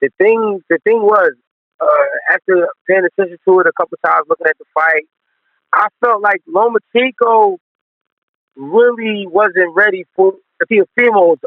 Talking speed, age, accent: 140 wpm, 30-49, American